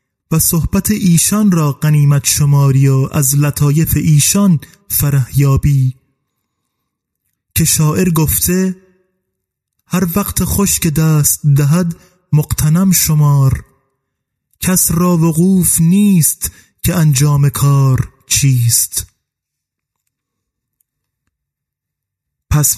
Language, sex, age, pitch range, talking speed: Persian, male, 30-49, 135-185 Hz, 80 wpm